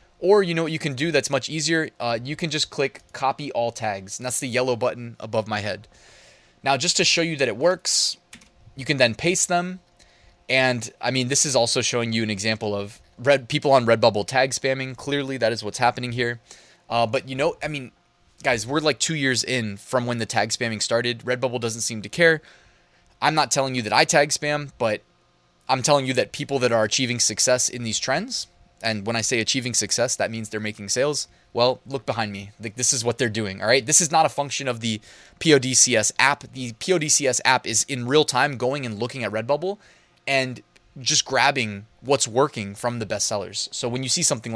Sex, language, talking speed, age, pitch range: male, English, 220 wpm, 20-39, 115-145 Hz